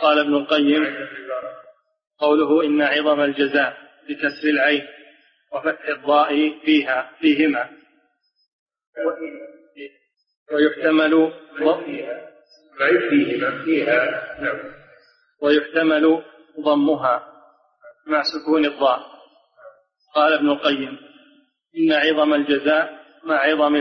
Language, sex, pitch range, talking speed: Arabic, male, 150-160 Hz, 70 wpm